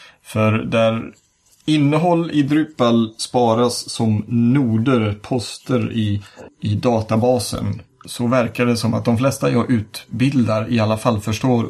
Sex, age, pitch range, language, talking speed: male, 30-49, 105-125 Hz, Swedish, 130 wpm